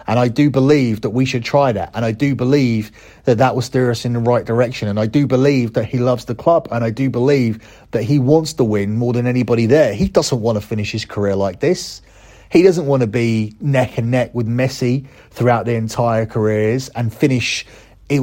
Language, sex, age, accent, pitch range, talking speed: English, male, 30-49, British, 110-135 Hz, 230 wpm